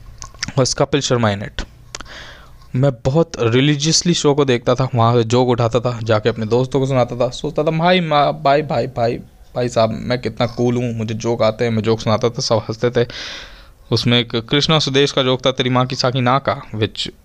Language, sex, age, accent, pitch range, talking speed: Hindi, male, 20-39, native, 110-145 Hz, 205 wpm